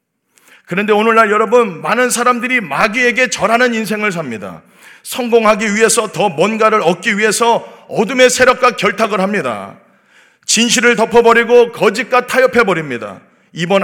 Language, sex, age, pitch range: Korean, male, 40-59, 205-240 Hz